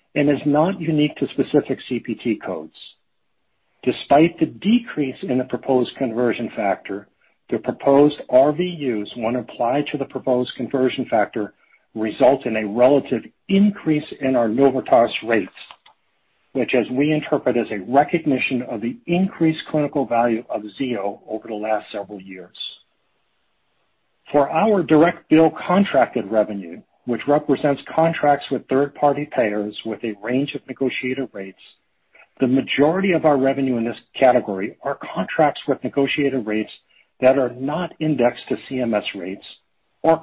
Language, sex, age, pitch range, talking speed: English, male, 60-79, 120-150 Hz, 140 wpm